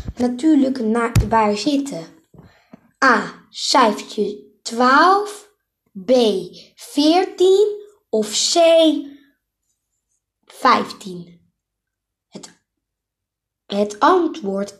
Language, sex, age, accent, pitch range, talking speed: Dutch, female, 20-39, Dutch, 210-315 Hz, 60 wpm